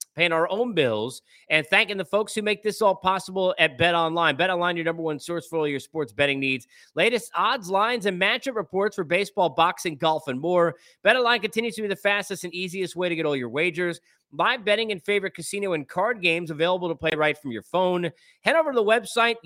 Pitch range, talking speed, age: 140-185 Hz, 230 wpm, 30-49